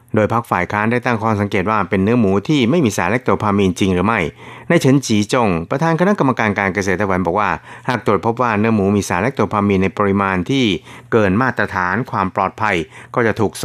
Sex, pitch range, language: male, 95-120 Hz, Thai